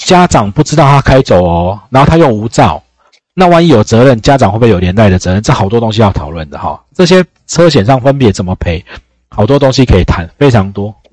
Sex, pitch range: male, 90-135 Hz